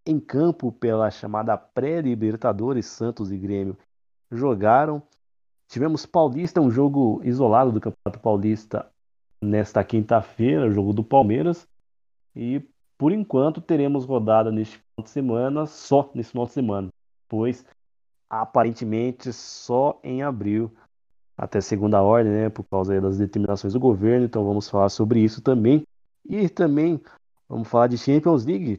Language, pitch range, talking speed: Portuguese, 105-135 Hz, 135 wpm